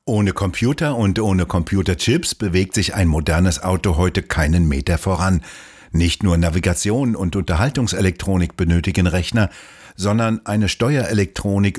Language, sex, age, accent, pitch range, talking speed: German, male, 60-79, German, 85-105 Hz, 120 wpm